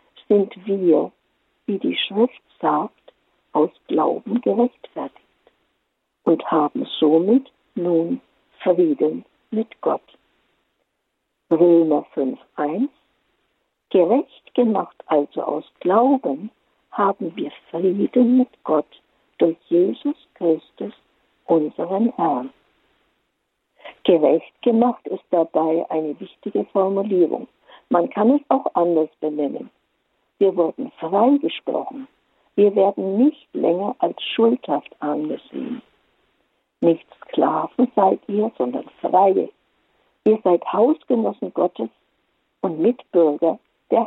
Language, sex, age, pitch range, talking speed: German, female, 60-79, 170-250 Hz, 95 wpm